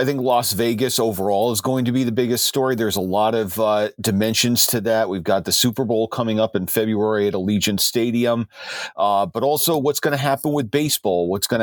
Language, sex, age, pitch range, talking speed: English, male, 40-59, 100-120 Hz, 220 wpm